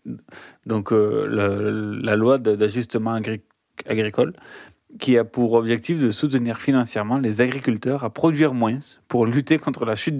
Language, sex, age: French, male, 30-49